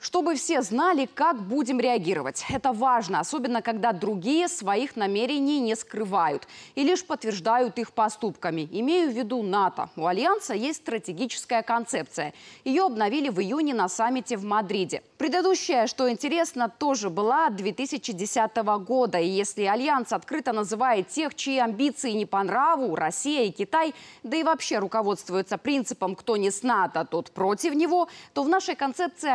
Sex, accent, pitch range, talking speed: female, native, 205-280 Hz, 150 wpm